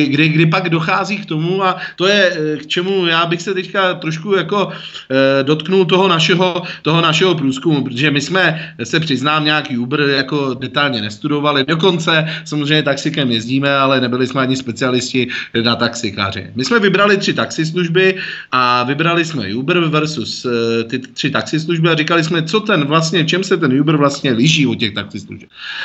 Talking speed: 170 wpm